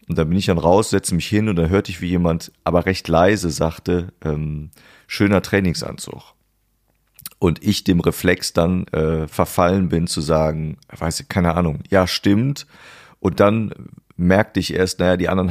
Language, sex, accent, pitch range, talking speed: German, male, German, 85-100 Hz, 180 wpm